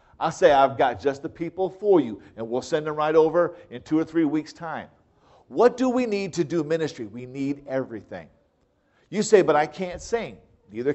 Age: 50-69